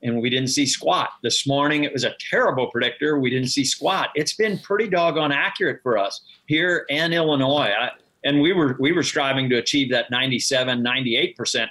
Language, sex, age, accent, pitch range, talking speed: English, male, 50-69, American, 125-155 Hz, 185 wpm